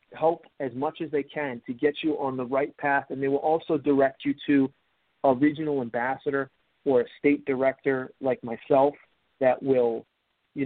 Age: 40-59